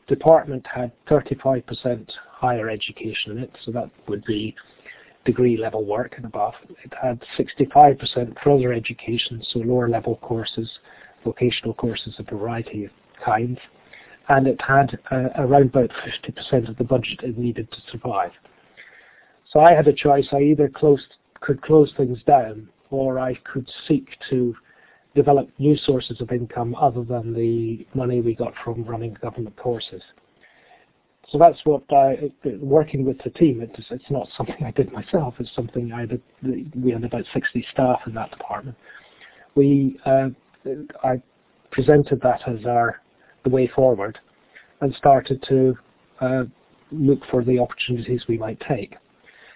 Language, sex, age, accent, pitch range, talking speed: English, male, 40-59, British, 115-135 Hz, 155 wpm